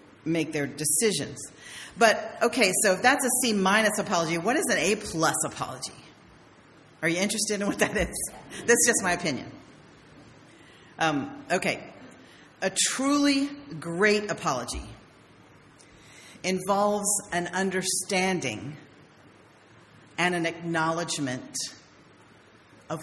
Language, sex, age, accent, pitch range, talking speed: English, female, 40-59, American, 165-215 Hz, 110 wpm